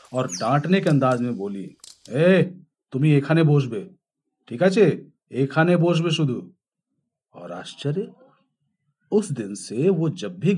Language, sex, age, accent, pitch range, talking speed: Hindi, male, 40-59, native, 125-155 Hz, 140 wpm